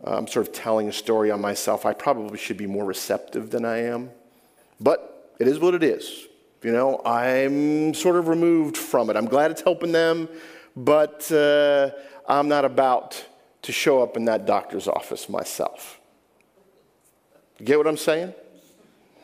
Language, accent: English, American